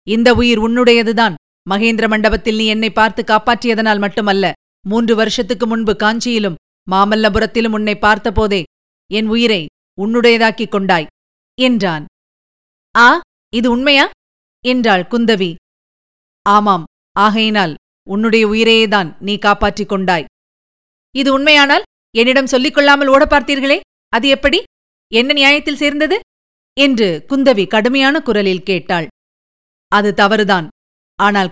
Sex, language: female, Tamil